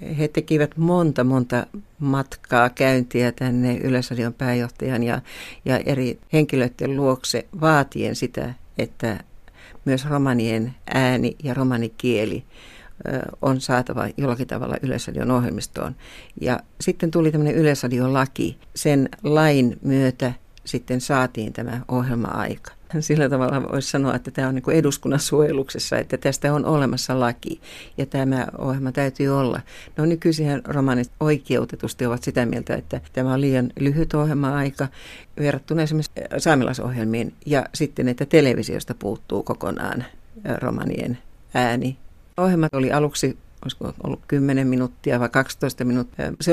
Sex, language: female, Finnish